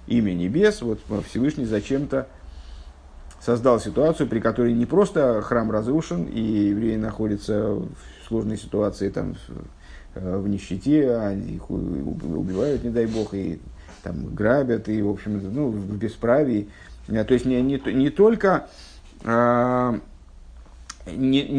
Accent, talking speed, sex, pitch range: native, 130 wpm, male, 100-135 Hz